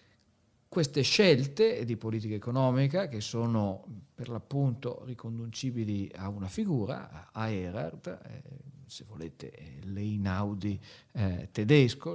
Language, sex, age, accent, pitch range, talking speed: Italian, male, 50-69, native, 100-135 Hz, 95 wpm